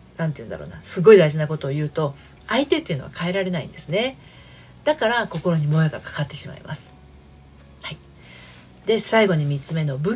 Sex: female